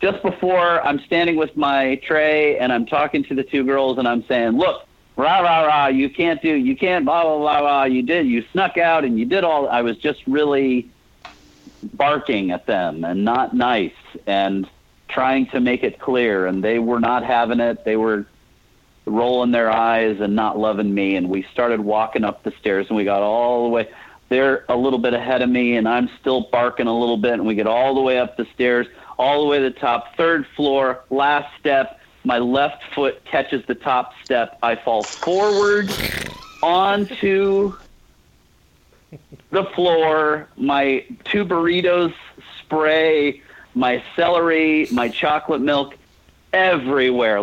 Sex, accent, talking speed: male, American, 175 wpm